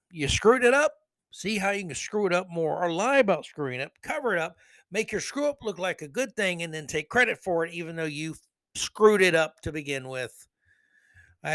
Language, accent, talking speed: English, American, 235 wpm